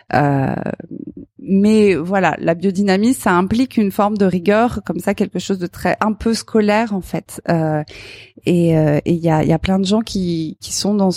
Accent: French